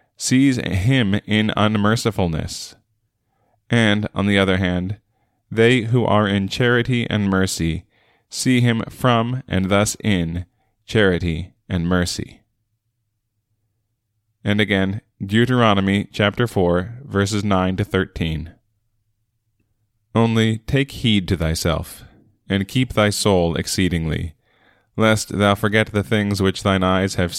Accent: American